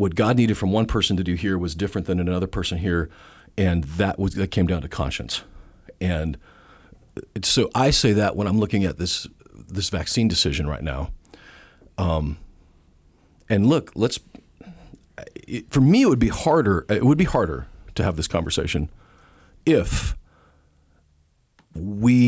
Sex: male